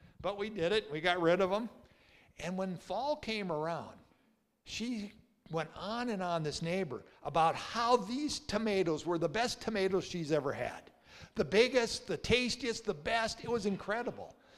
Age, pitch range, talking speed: 60-79, 165-225 Hz, 170 wpm